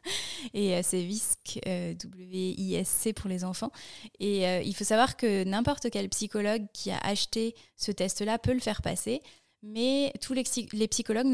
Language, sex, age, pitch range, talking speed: French, female, 20-39, 190-220 Hz, 155 wpm